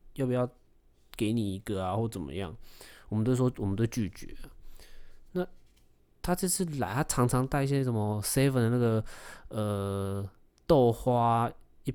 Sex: male